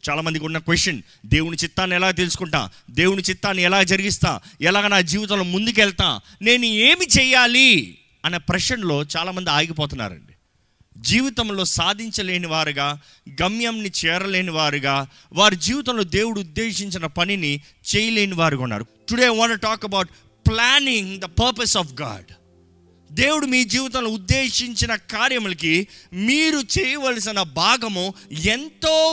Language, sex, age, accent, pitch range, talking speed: Telugu, male, 30-49, native, 160-235 Hz, 110 wpm